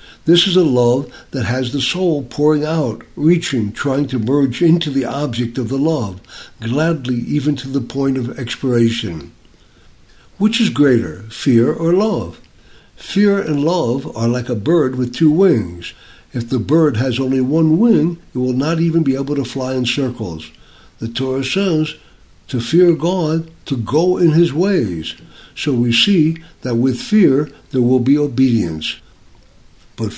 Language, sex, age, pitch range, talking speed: English, male, 60-79, 115-160 Hz, 165 wpm